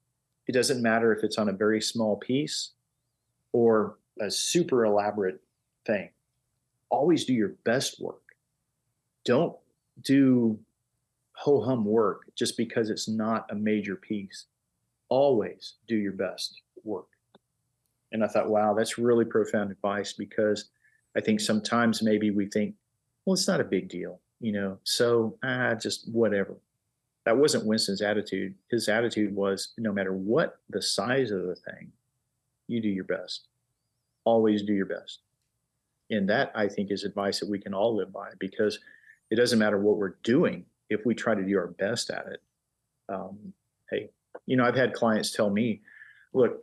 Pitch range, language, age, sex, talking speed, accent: 105-125 Hz, English, 40-59, male, 160 wpm, American